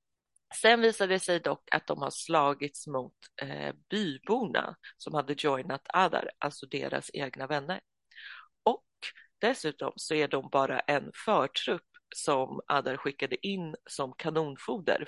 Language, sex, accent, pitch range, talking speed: Swedish, female, native, 140-175 Hz, 135 wpm